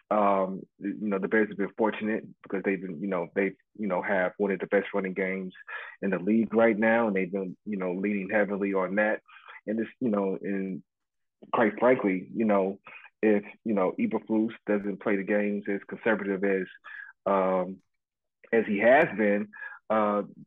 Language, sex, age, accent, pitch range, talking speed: English, male, 30-49, American, 95-110 Hz, 185 wpm